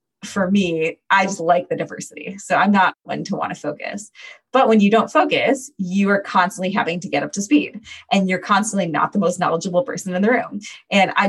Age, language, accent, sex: 20-39, English, American, female